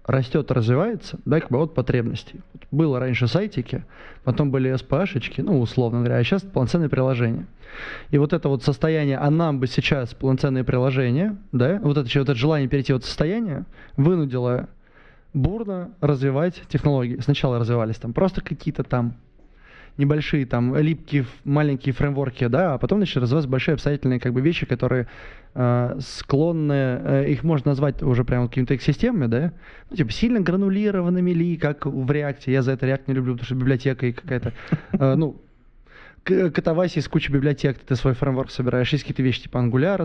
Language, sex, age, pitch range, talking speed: Russian, male, 20-39, 130-160 Hz, 170 wpm